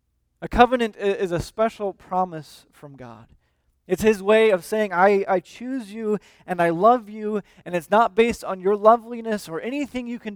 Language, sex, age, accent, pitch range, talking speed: English, male, 20-39, American, 160-220 Hz, 185 wpm